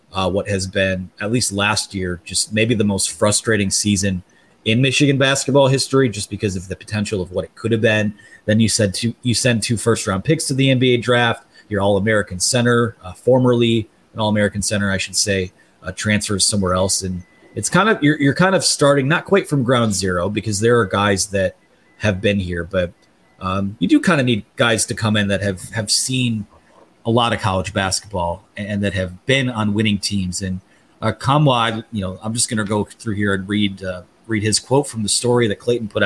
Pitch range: 100-120 Hz